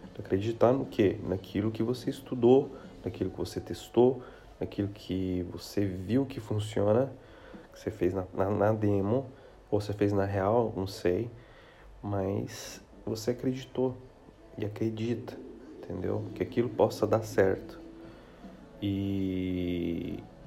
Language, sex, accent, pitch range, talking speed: Portuguese, male, Brazilian, 95-115 Hz, 125 wpm